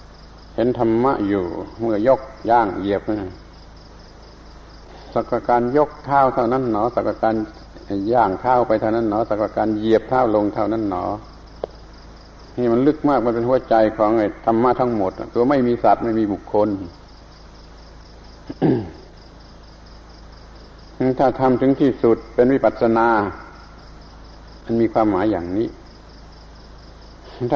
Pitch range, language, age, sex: 85-120 Hz, Thai, 60-79, male